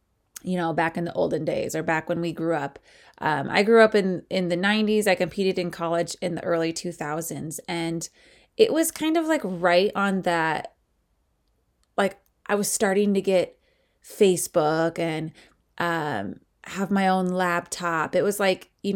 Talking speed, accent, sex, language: 175 wpm, American, female, English